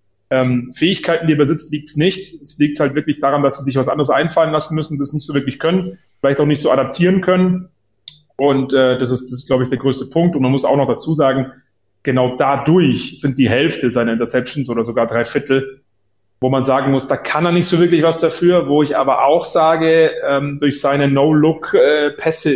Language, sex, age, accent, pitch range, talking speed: German, male, 30-49, German, 130-155 Hz, 215 wpm